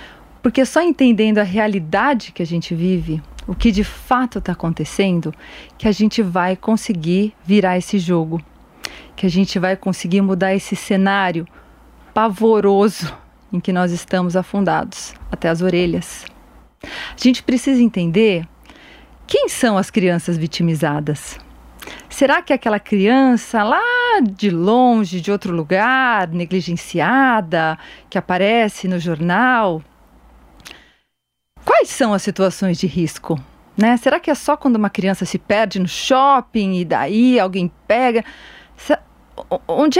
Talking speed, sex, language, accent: 130 wpm, female, Portuguese, Brazilian